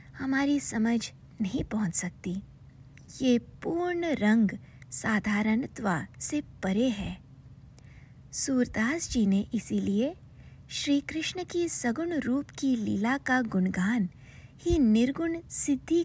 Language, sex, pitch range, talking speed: English, female, 180-270 Hz, 100 wpm